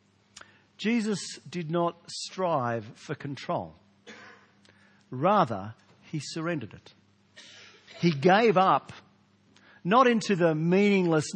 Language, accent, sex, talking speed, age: English, Australian, male, 90 wpm, 50-69